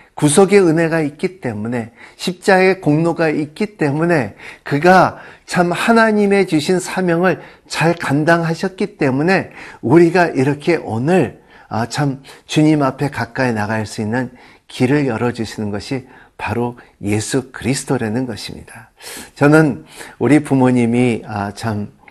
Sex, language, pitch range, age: male, Korean, 115-170 Hz, 50-69